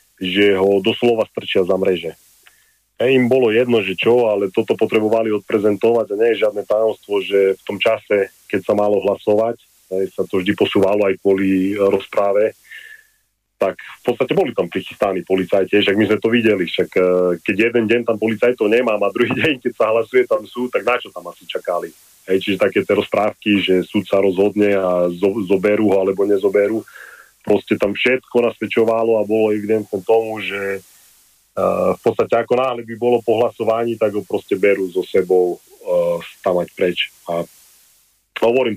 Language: Slovak